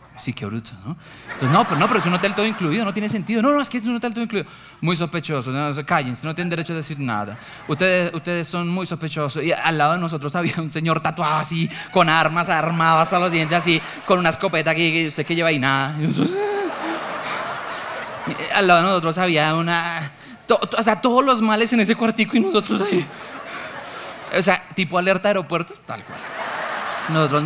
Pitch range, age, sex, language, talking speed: 145-190 Hz, 20-39, male, Spanish, 210 wpm